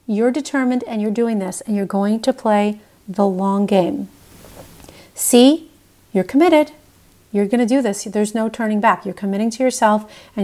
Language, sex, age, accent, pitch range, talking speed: English, female, 40-59, American, 195-245 Hz, 180 wpm